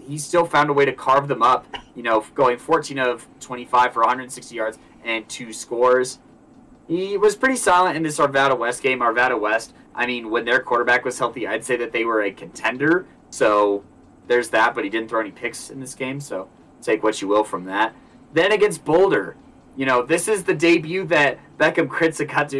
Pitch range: 120-145 Hz